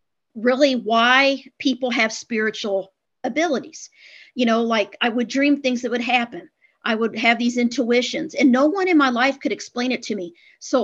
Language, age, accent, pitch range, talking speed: English, 50-69, American, 225-270 Hz, 185 wpm